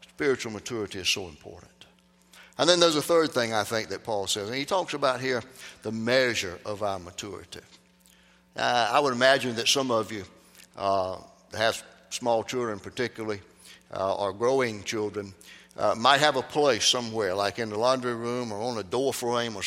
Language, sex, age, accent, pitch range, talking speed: English, male, 60-79, American, 100-135 Hz, 190 wpm